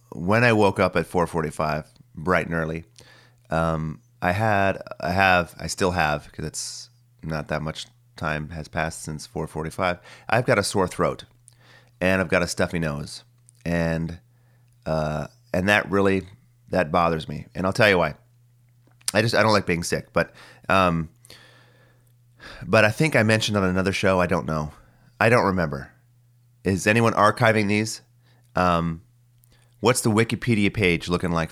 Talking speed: 160 wpm